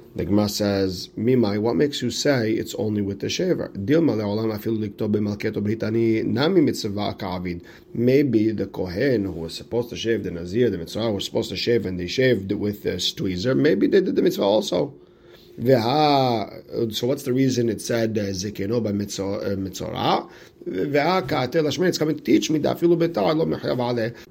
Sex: male